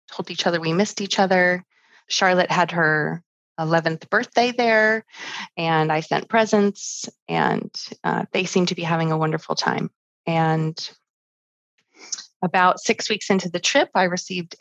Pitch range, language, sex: 160-190 Hz, English, female